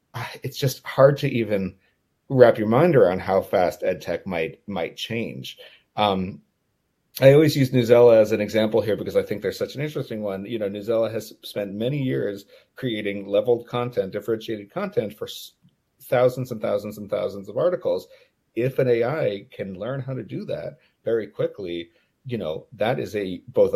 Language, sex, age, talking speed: English, male, 40-59, 175 wpm